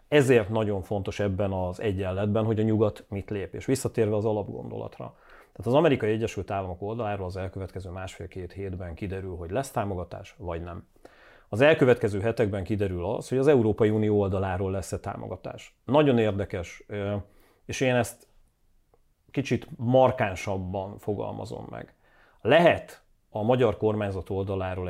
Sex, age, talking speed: male, 30-49, 135 wpm